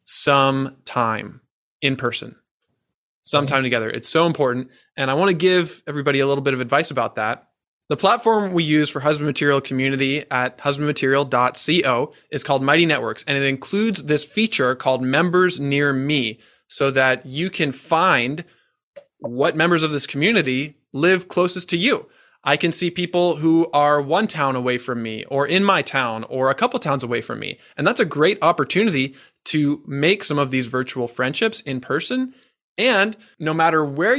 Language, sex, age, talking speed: English, male, 20-39, 175 wpm